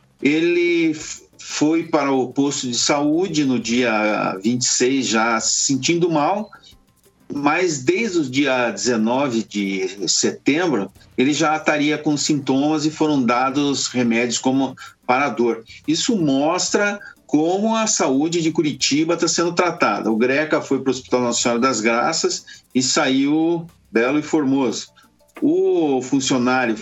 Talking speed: 135 wpm